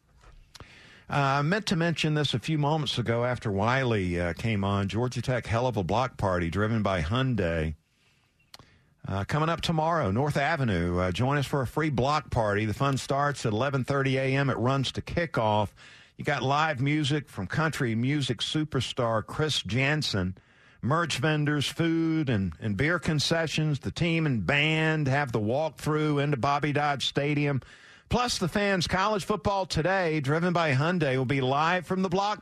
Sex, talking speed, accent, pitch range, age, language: male, 170 wpm, American, 115-160 Hz, 50-69, English